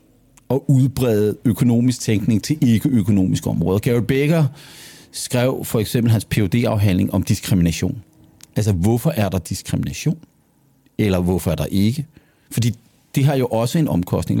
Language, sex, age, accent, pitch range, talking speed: Danish, male, 50-69, native, 105-145 Hz, 140 wpm